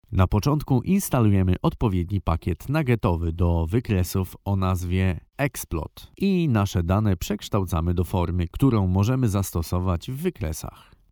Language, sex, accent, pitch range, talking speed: Polish, male, native, 90-115 Hz, 120 wpm